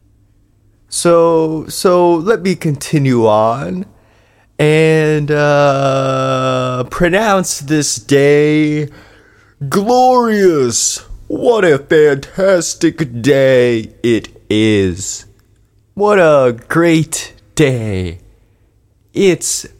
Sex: male